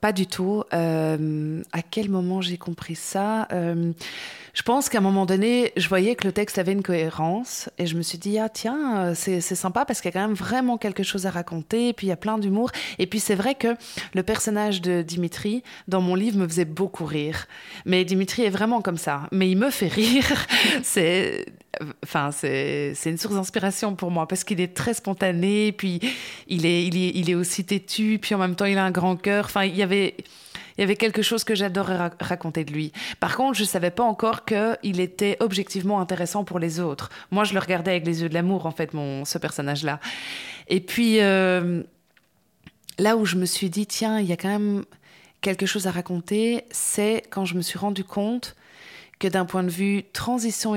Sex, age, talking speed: female, 20-39, 220 wpm